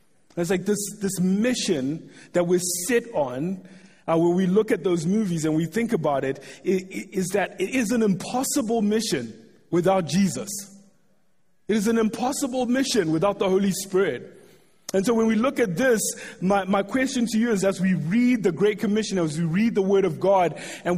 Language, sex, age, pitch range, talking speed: English, male, 30-49, 175-215 Hz, 195 wpm